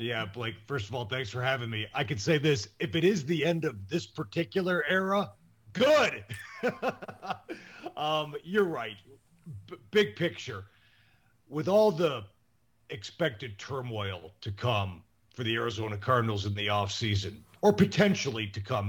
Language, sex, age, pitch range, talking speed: English, male, 40-59, 105-155 Hz, 145 wpm